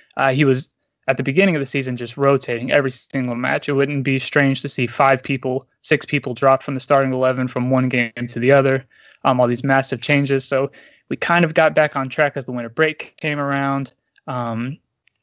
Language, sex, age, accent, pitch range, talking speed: English, male, 20-39, American, 130-150 Hz, 215 wpm